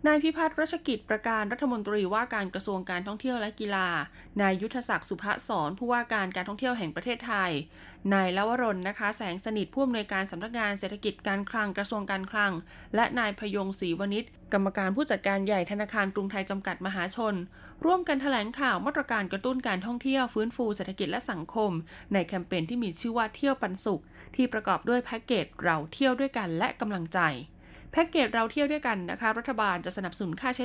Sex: female